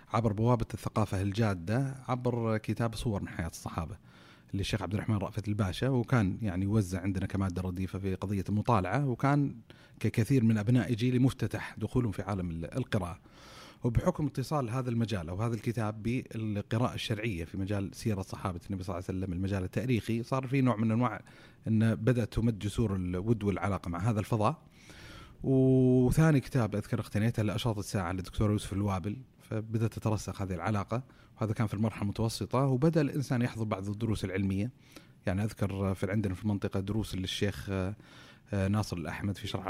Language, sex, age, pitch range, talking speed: Arabic, male, 30-49, 100-120 Hz, 160 wpm